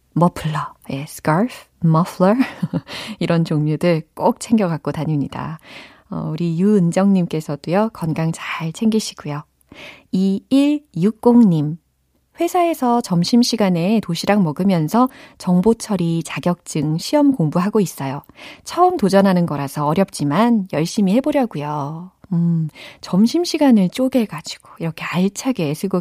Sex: female